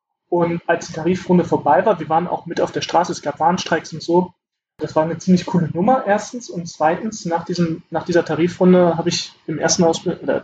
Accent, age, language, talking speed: German, 20-39, German, 215 wpm